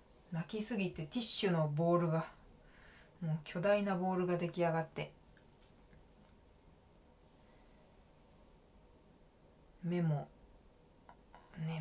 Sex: female